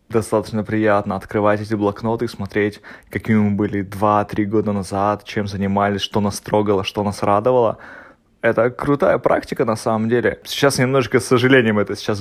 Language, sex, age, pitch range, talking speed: Russian, male, 20-39, 100-115 Hz, 165 wpm